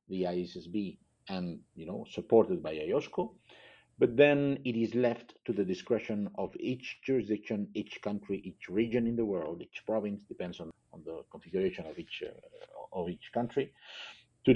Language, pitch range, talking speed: English, 100-120 Hz, 165 wpm